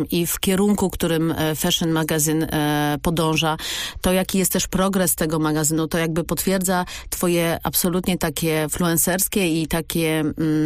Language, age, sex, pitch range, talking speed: Polish, 40-59, female, 160-195 Hz, 130 wpm